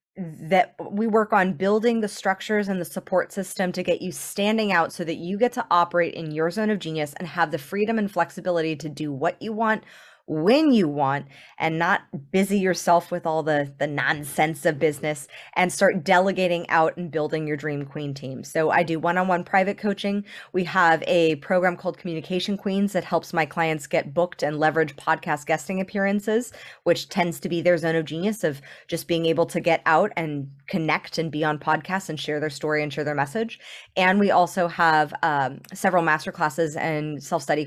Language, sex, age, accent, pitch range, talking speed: English, female, 20-39, American, 155-190 Hz, 200 wpm